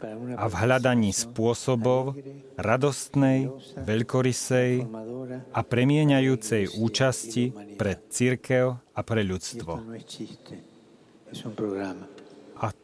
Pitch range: 110-130 Hz